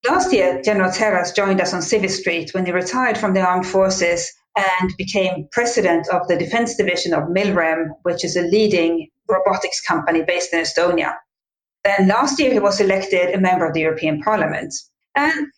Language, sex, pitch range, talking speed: English, female, 180-240 Hz, 180 wpm